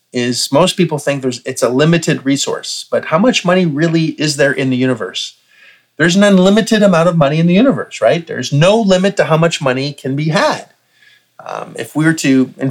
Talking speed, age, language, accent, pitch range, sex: 210 wpm, 30-49, English, American, 140-185 Hz, male